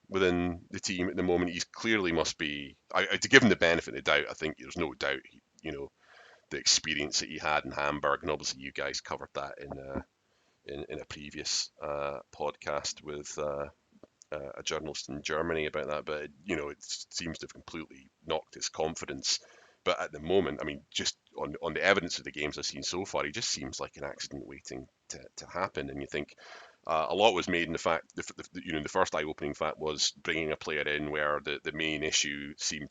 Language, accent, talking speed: English, British, 230 wpm